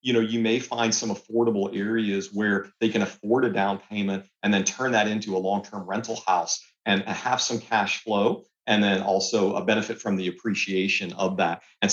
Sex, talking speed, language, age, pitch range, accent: male, 205 wpm, English, 40-59, 95-110 Hz, American